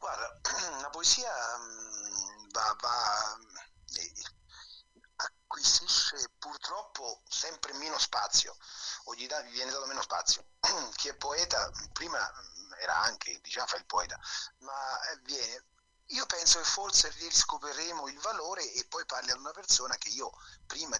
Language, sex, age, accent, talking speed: Italian, male, 30-49, native, 130 wpm